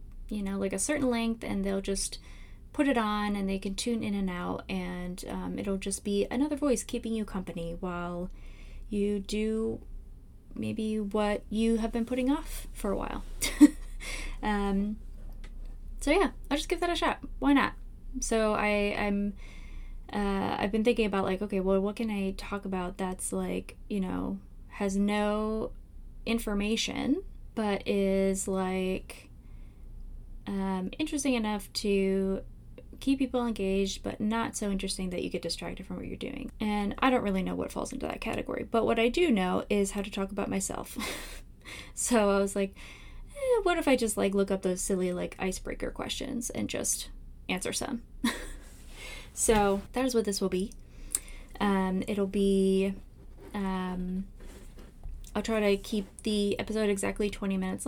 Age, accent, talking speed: 20-39, American, 165 wpm